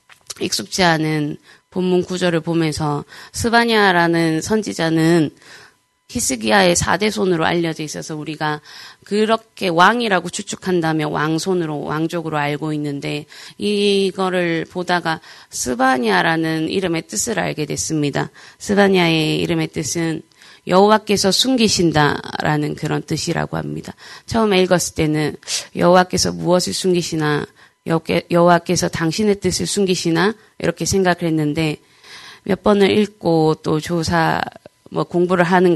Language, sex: Korean, female